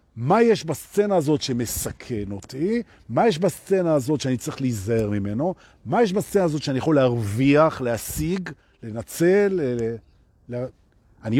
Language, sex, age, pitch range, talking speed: Hebrew, male, 50-69, 115-185 Hz, 130 wpm